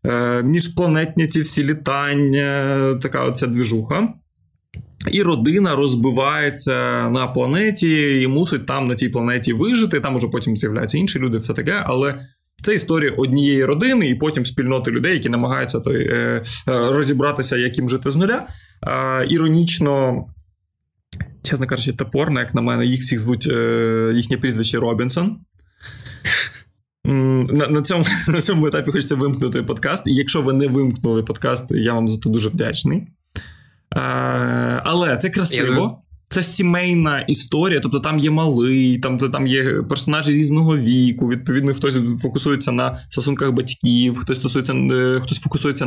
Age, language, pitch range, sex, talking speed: 20-39, Ukrainian, 125-150 Hz, male, 135 wpm